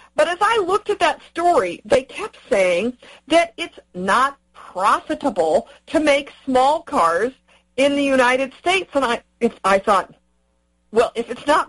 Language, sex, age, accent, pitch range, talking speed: English, female, 50-69, American, 210-295 Hz, 160 wpm